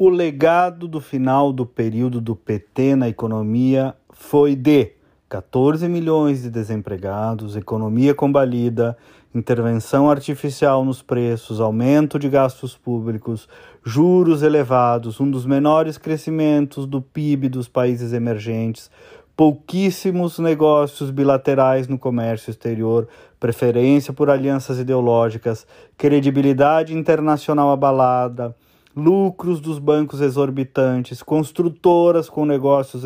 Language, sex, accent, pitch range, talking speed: Portuguese, male, Brazilian, 125-155 Hz, 105 wpm